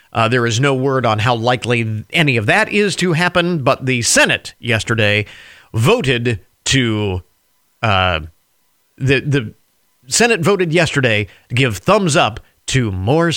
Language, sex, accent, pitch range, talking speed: English, male, American, 120-175 Hz, 145 wpm